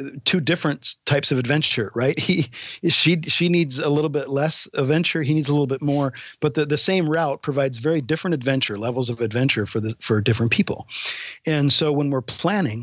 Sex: male